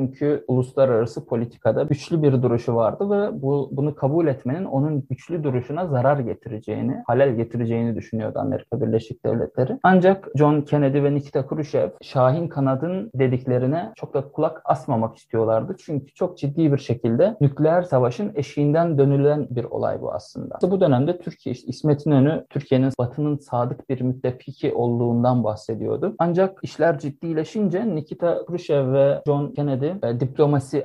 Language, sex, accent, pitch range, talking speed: Turkish, male, native, 125-155 Hz, 145 wpm